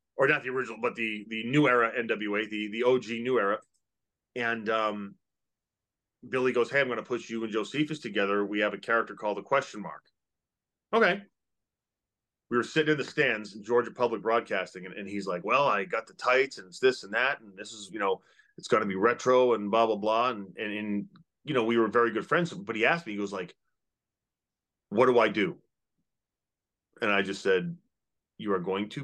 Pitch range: 105-130 Hz